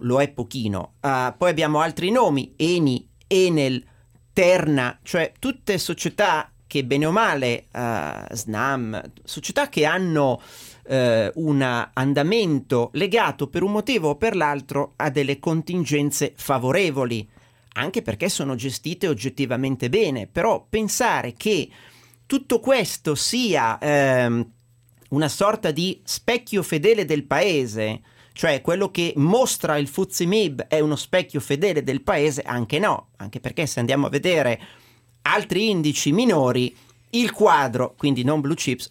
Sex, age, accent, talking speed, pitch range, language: male, 40-59, native, 135 wpm, 125-175 Hz, Italian